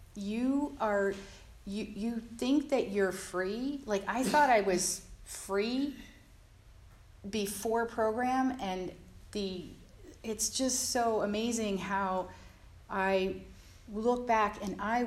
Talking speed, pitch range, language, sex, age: 110 wpm, 180-230 Hz, English, female, 40-59